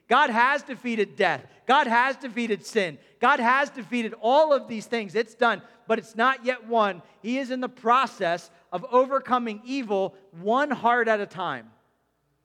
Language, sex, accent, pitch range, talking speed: English, male, American, 160-225 Hz, 170 wpm